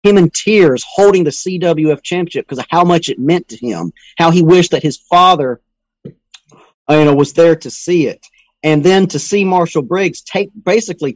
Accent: American